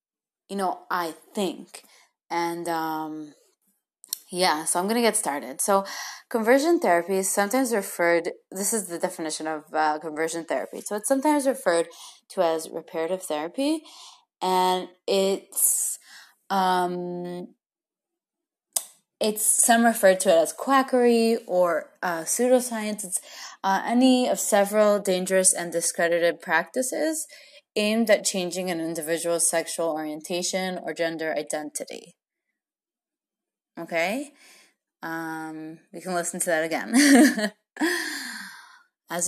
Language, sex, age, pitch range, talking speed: English, female, 20-39, 165-230 Hz, 115 wpm